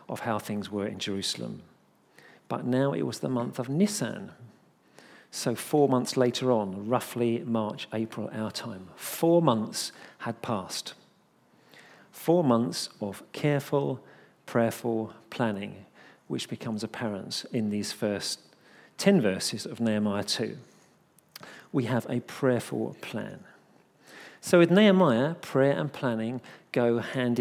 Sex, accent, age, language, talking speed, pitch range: male, British, 50-69, English, 125 wpm, 115-145 Hz